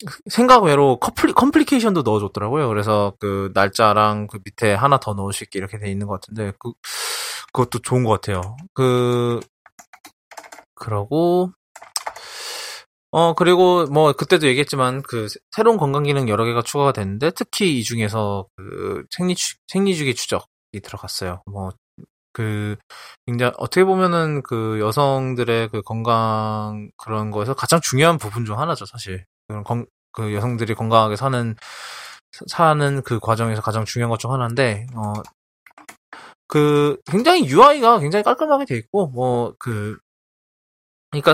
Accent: Korean